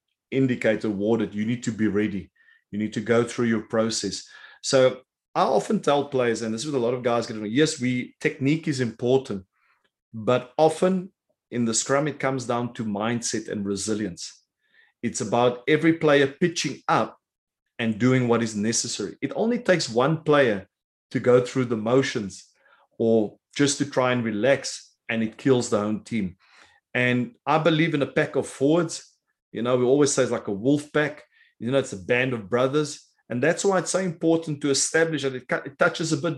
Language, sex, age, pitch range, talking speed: English, male, 30-49, 115-145 Hz, 195 wpm